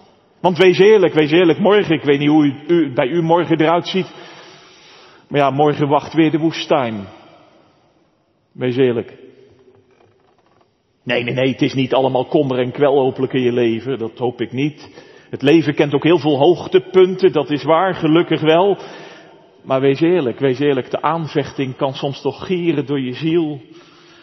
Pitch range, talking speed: 135-180 Hz, 170 wpm